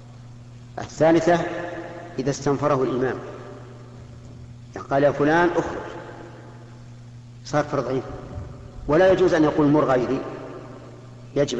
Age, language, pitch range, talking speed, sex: 50-69, Arabic, 120-145 Hz, 95 wpm, male